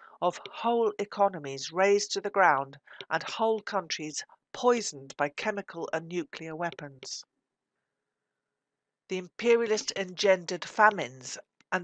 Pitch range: 160-195 Hz